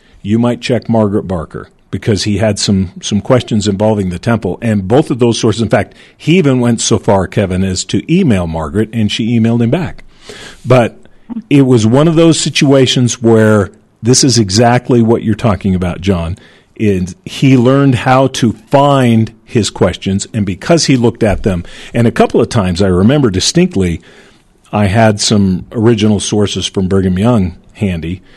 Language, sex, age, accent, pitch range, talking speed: English, male, 50-69, American, 95-120 Hz, 175 wpm